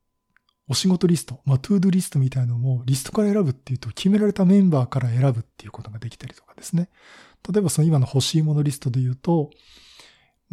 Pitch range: 125-180 Hz